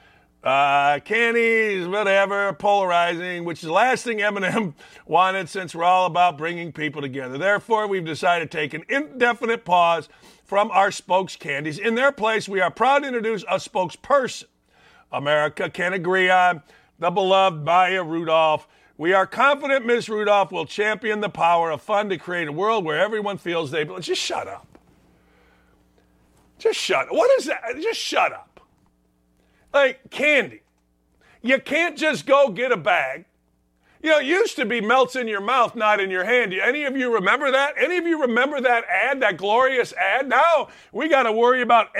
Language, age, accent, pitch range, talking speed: English, 50-69, American, 170-250 Hz, 175 wpm